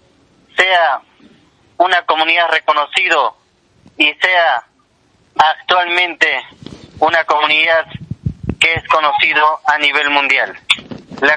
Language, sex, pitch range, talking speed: Spanish, male, 150-180 Hz, 80 wpm